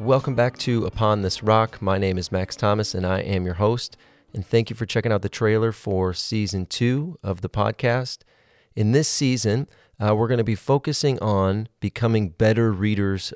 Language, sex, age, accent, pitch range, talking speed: English, male, 30-49, American, 95-115 Hz, 195 wpm